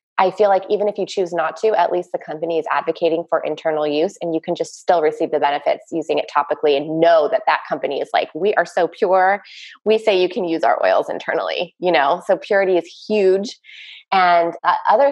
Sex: female